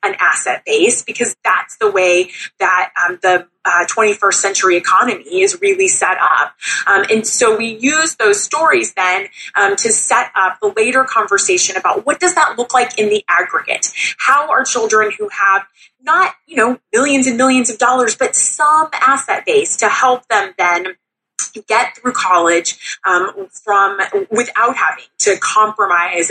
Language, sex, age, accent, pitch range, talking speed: English, female, 20-39, American, 190-275 Hz, 165 wpm